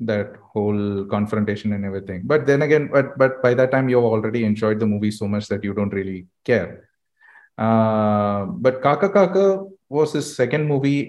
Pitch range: 105-130 Hz